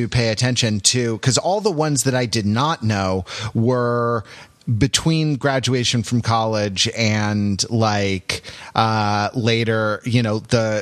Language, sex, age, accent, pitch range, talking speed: English, male, 30-49, American, 105-130 Hz, 135 wpm